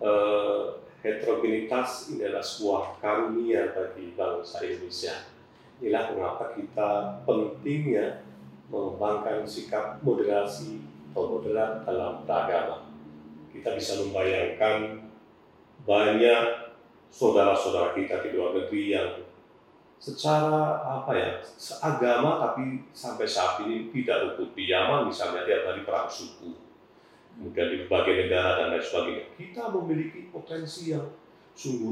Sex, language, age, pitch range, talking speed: male, Indonesian, 40-59, 105-150 Hz, 105 wpm